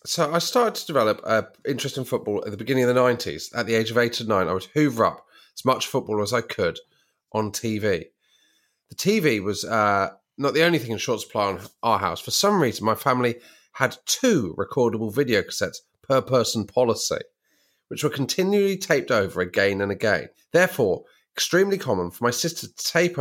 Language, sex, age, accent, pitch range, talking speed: English, male, 30-49, British, 105-160 Hz, 200 wpm